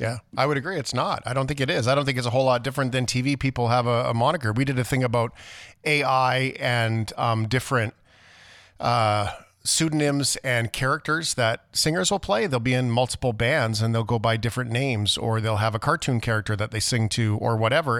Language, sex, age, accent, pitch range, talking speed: English, male, 40-59, American, 110-135 Hz, 220 wpm